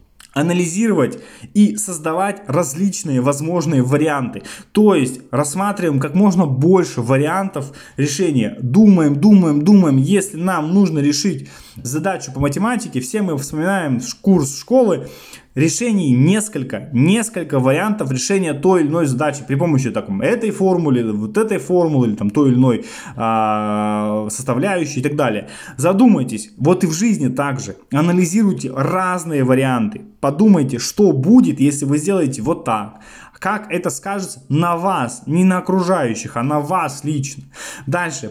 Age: 20-39